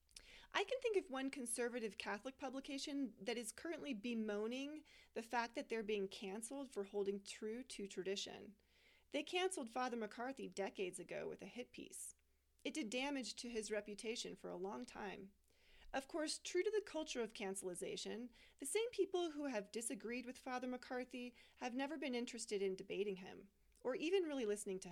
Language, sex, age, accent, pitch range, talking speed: English, female, 30-49, American, 205-285 Hz, 175 wpm